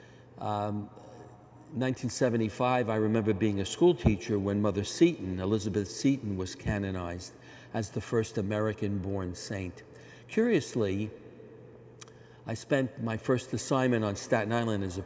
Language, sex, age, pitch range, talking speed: English, male, 60-79, 105-125 Hz, 130 wpm